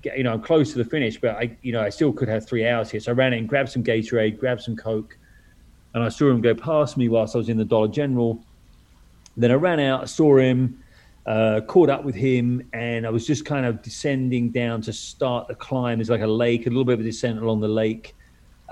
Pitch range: 110-130 Hz